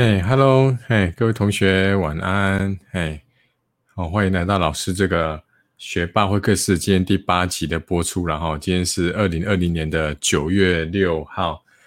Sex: male